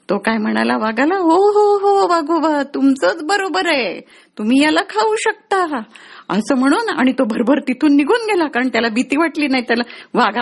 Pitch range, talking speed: 235-355 Hz, 190 wpm